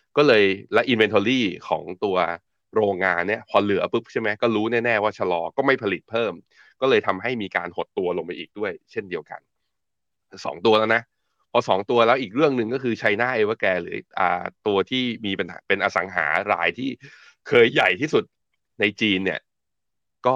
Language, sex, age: Thai, male, 20-39